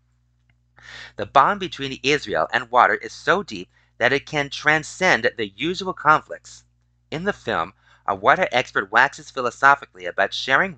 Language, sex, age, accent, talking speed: English, male, 30-49, American, 145 wpm